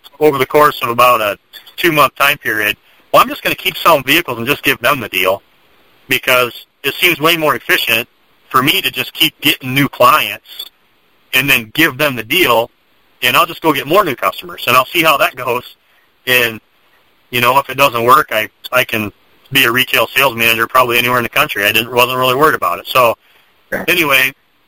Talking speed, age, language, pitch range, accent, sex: 210 wpm, 40-59, English, 115-140 Hz, American, male